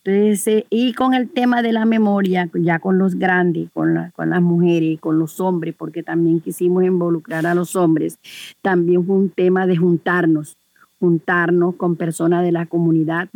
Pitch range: 170-200 Hz